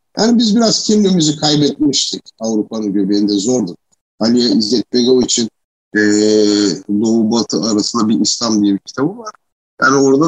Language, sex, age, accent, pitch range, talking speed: Turkish, male, 60-79, native, 105-150 Hz, 135 wpm